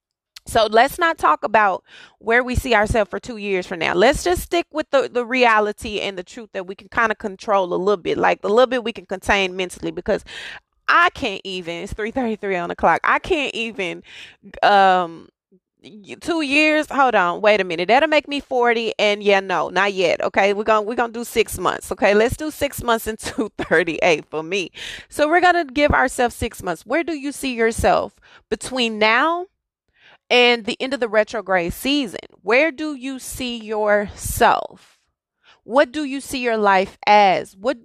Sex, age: female, 20-39